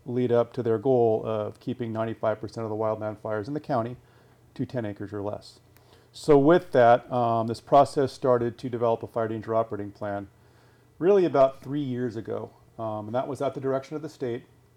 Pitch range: 110-125 Hz